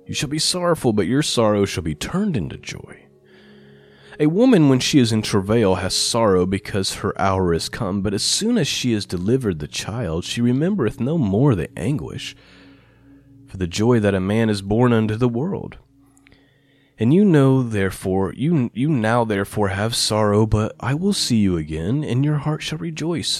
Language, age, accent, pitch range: English, 30-49, American, 90-135 Hz